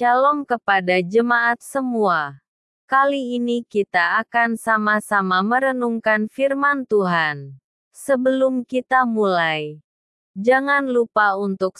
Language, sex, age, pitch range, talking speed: Indonesian, female, 20-39, 195-255 Hz, 90 wpm